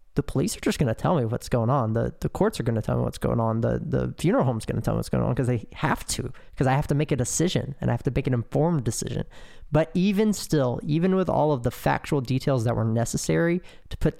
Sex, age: male, 20-39